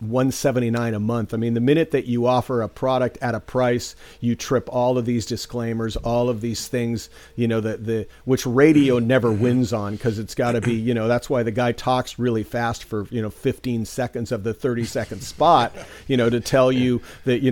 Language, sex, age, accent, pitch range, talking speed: English, male, 40-59, American, 115-135 Hz, 225 wpm